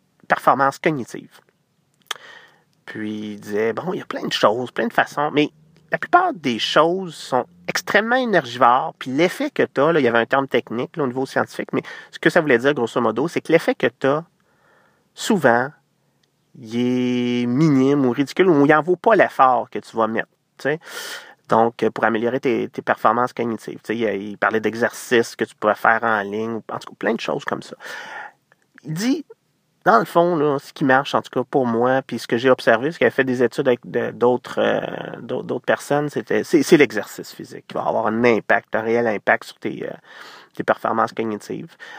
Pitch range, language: 115-160 Hz, French